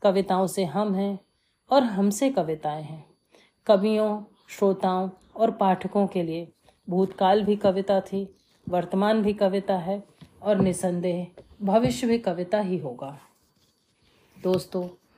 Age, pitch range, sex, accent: 30-49, 180-220 Hz, female, native